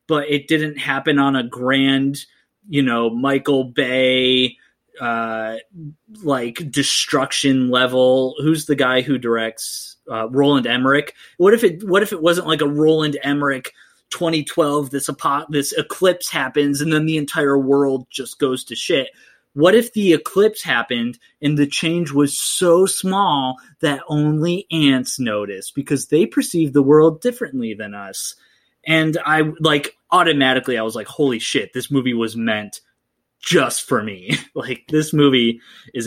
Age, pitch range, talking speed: 20-39, 130-160 Hz, 150 wpm